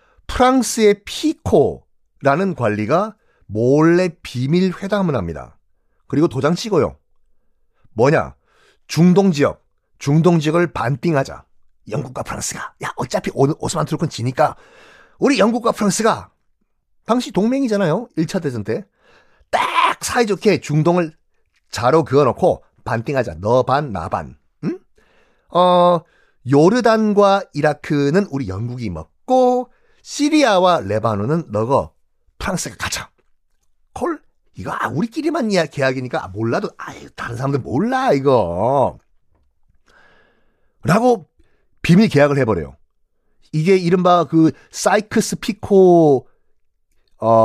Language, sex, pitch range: Korean, male, 135-205 Hz